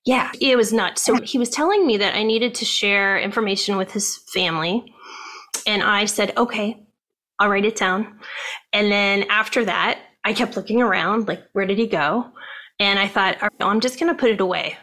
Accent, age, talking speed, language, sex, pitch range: American, 20-39, 200 wpm, English, female, 190-230 Hz